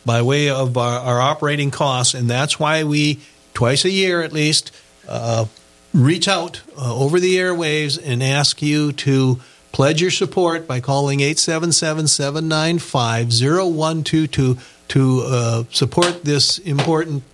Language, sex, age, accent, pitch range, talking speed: English, male, 50-69, American, 120-150 Hz, 130 wpm